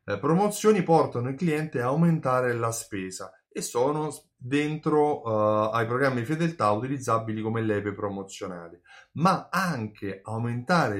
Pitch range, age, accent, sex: 105-150 Hz, 30-49, native, male